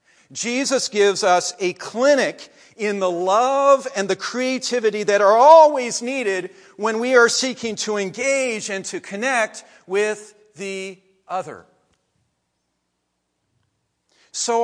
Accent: American